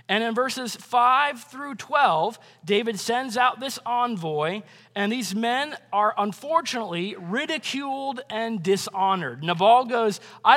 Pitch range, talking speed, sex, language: 190-250 Hz, 125 wpm, male, English